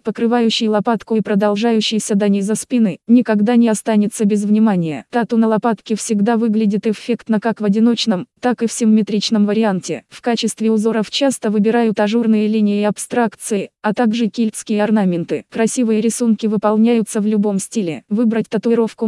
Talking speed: 150 wpm